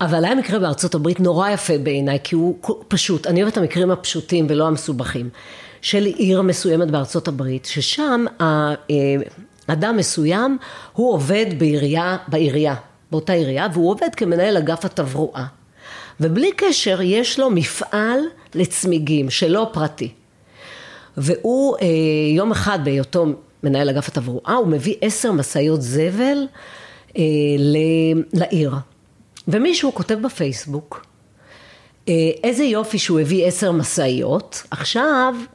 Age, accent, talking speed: 40-59, native, 115 wpm